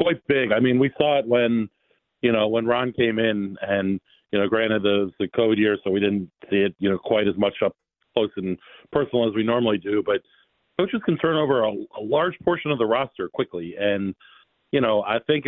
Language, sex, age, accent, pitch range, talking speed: English, male, 40-59, American, 105-125 Hz, 225 wpm